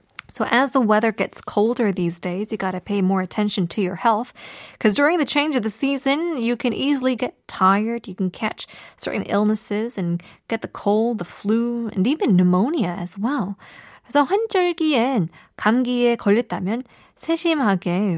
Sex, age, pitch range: female, 20-39, 195-270 Hz